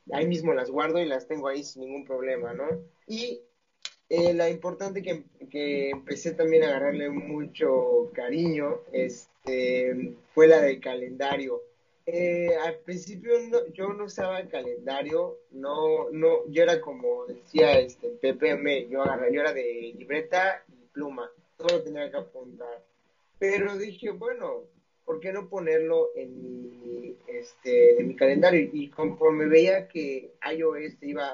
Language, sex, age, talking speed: Spanish, male, 20-39, 150 wpm